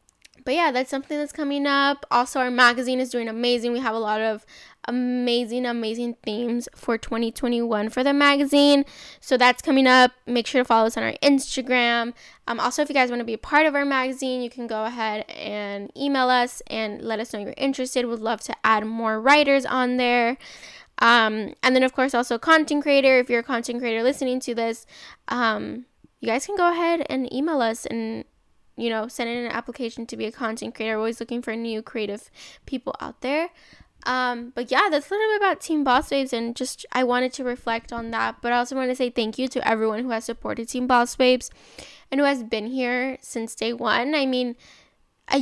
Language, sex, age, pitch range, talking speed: English, female, 10-29, 230-265 Hz, 215 wpm